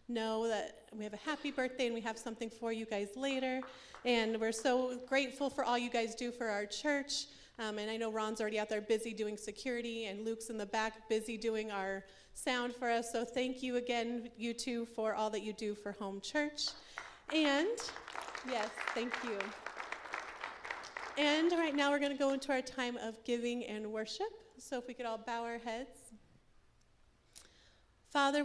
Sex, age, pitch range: female, 30-49, 205-240 Hz